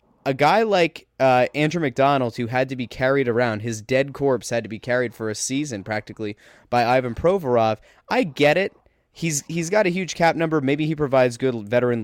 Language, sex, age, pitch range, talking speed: English, male, 20-39, 125-180 Hz, 205 wpm